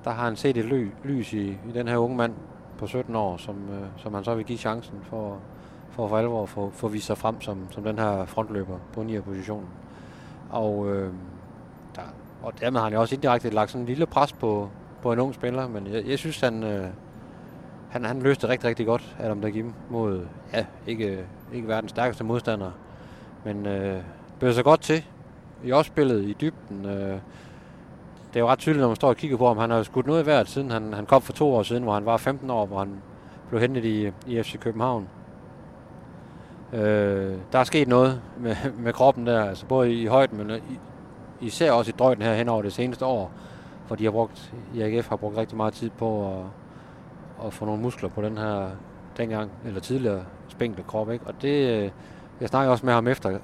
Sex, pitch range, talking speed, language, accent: male, 105-125 Hz, 215 wpm, Danish, native